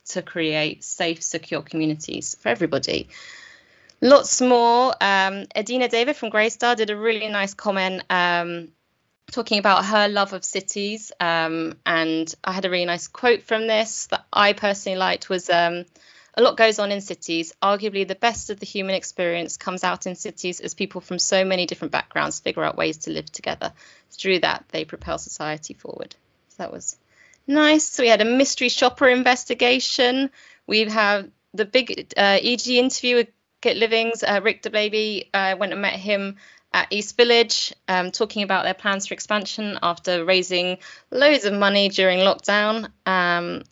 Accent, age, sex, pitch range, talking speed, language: British, 20-39, female, 185-235 Hz, 175 wpm, English